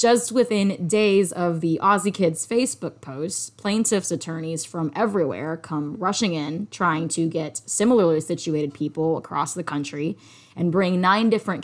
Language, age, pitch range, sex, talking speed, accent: English, 20-39, 160-200 Hz, female, 150 wpm, American